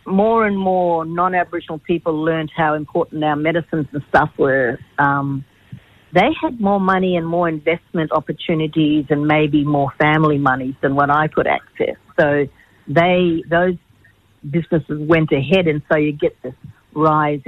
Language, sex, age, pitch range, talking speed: English, female, 60-79, 140-170 Hz, 150 wpm